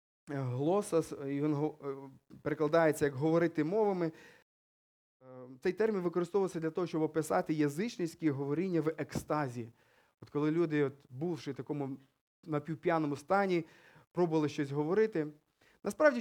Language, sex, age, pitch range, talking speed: Ukrainian, male, 20-39, 155-215 Hz, 115 wpm